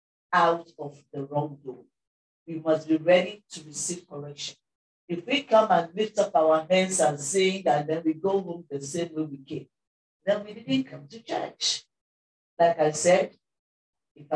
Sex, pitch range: female, 155-195 Hz